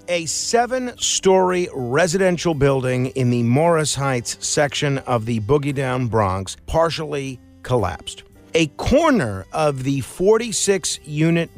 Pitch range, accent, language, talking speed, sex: 120-160 Hz, American, English, 110 wpm, male